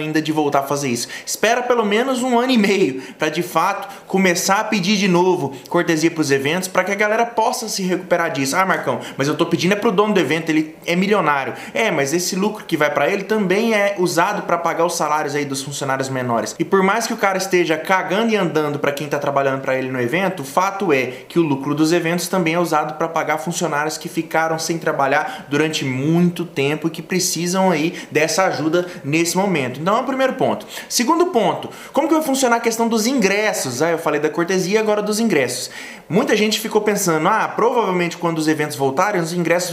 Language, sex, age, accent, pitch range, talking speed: Portuguese, male, 20-39, Brazilian, 155-205 Hz, 220 wpm